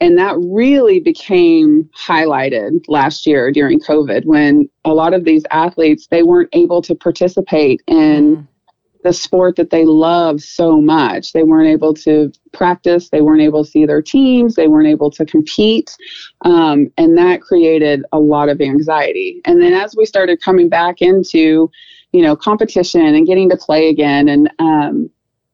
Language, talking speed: English, 170 wpm